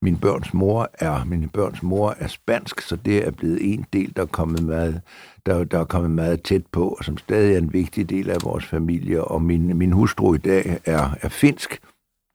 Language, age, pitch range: Danish, 60-79, 85-105 Hz